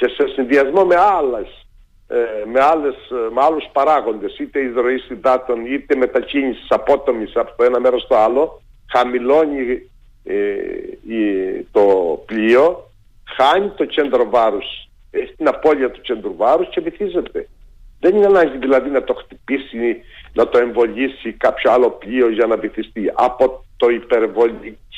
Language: Greek